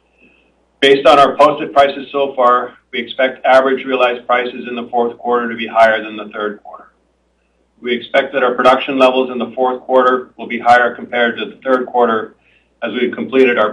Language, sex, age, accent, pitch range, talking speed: English, male, 50-69, American, 110-130 Hz, 195 wpm